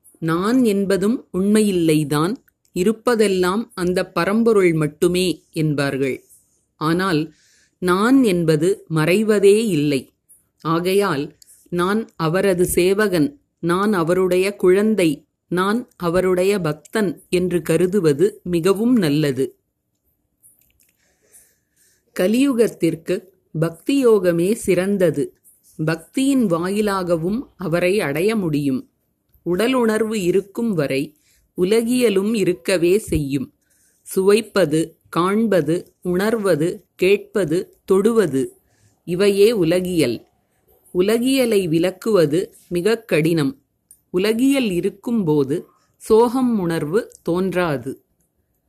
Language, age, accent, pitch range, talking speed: Tamil, 30-49, native, 165-215 Hz, 70 wpm